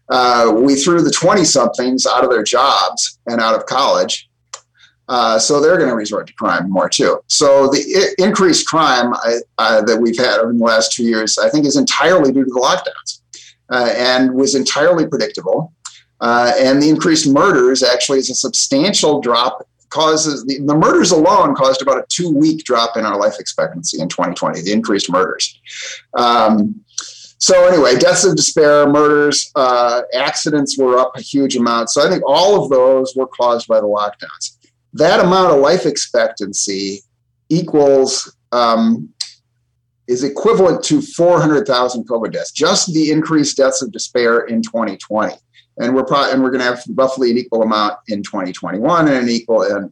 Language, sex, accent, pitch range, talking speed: English, male, American, 115-140 Hz, 170 wpm